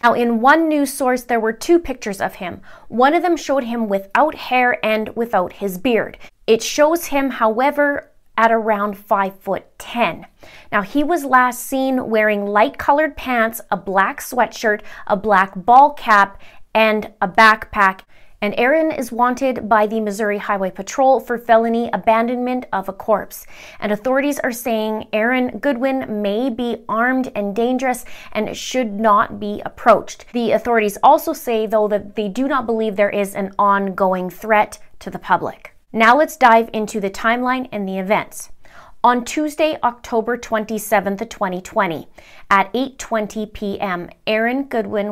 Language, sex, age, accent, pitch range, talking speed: English, female, 20-39, American, 205-255 Hz, 155 wpm